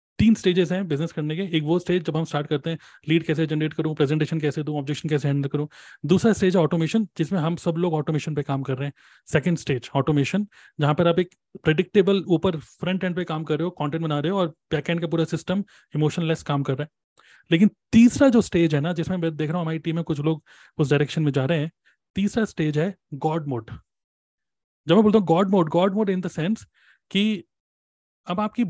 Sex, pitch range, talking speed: male, 155-200 Hz, 230 wpm